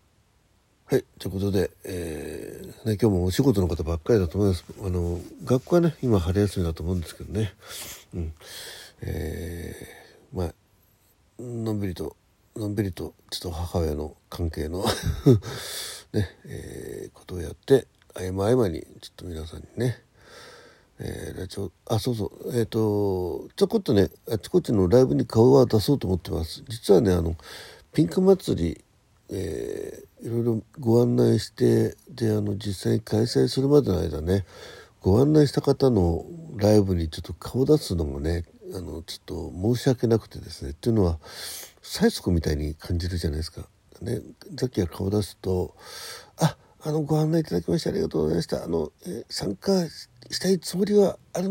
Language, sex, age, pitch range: Japanese, male, 60-79, 90-125 Hz